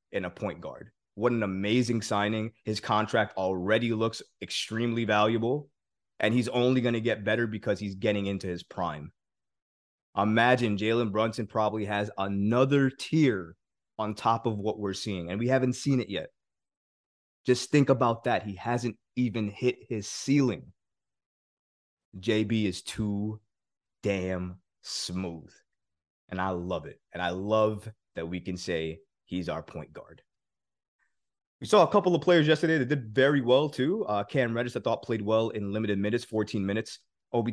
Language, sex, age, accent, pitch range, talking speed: English, male, 20-39, American, 100-120 Hz, 160 wpm